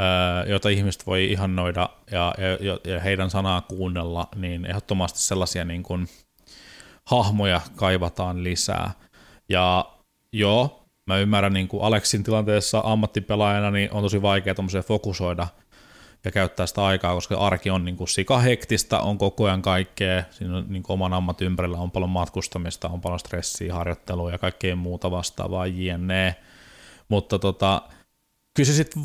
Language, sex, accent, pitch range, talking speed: Finnish, male, native, 90-105 Hz, 140 wpm